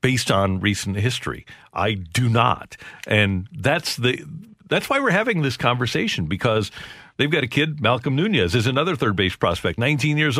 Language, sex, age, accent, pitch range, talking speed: English, male, 50-69, American, 100-130 Hz, 165 wpm